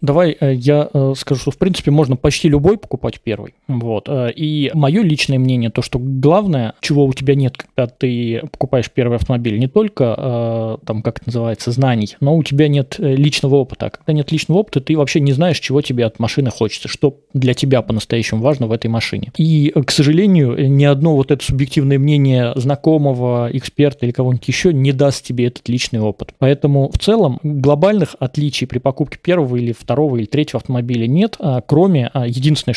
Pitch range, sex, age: 125-150 Hz, male, 20-39